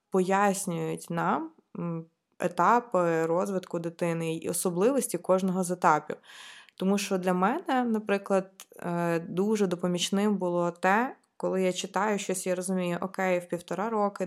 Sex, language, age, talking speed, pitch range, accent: female, Ukrainian, 20-39, 120 wpm, 170-195 Hz, native